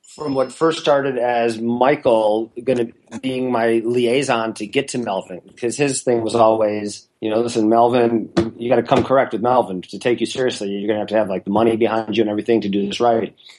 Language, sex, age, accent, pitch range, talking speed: English, male, 30-49, American, 105-125 Hz, 230 wpm